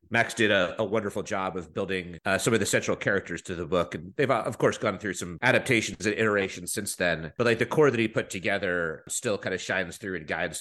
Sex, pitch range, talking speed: male, 95-135 Hz, 250 wpm